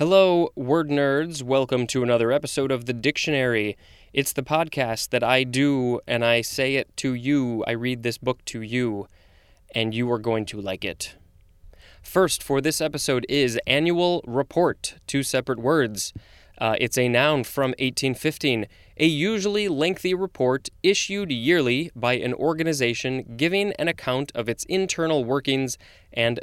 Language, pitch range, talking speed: English, 115-145 Hz, 155 wpm